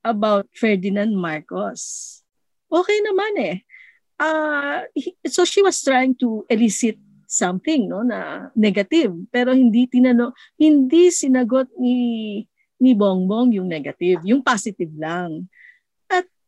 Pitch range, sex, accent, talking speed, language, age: 210-310 Hz, female, Filipino, 115 wpm, English, 40-59